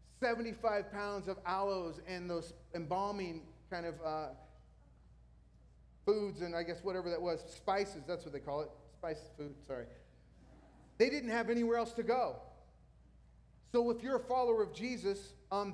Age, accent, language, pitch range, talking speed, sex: 40-59, American, English, 160-220 Hz, 155 wpm, male